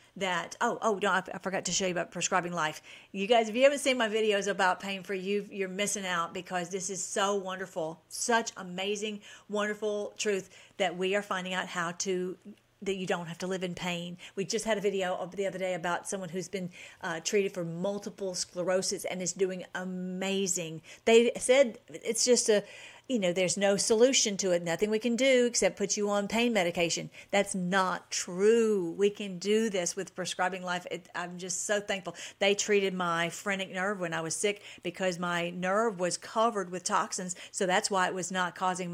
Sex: female